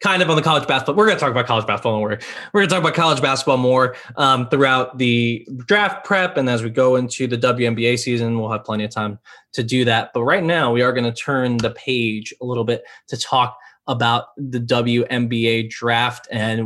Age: 20-39